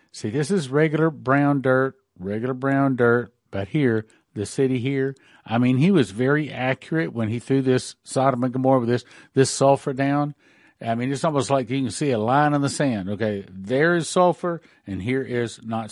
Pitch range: 120-150 Hz